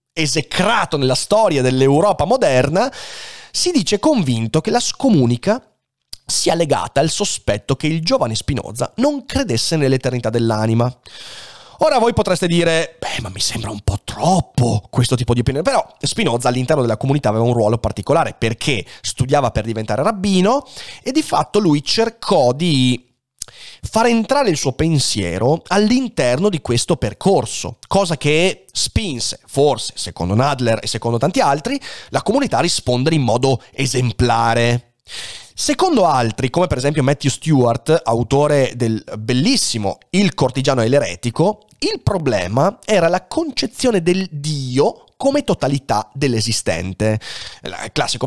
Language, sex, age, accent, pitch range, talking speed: Italian, male, 30-49, native, 120-180 Hz, 135 wpm